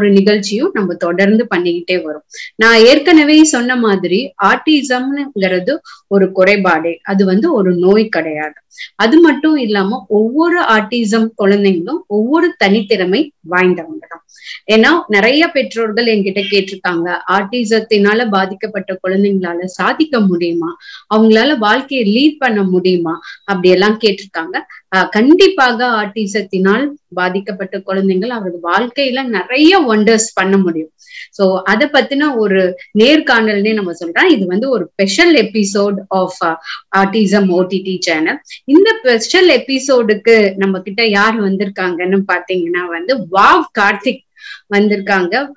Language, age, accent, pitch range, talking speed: Tamil, 30-49, native, 190-250 Hz, 105 wpm